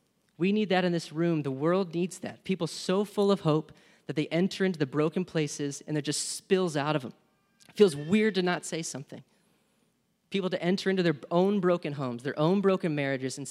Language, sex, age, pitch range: English, male, 30-49, 135-190 Hz